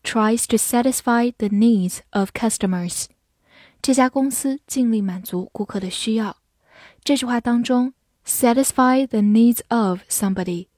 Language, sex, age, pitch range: Chinese, female, 10-29, 195-245 Hz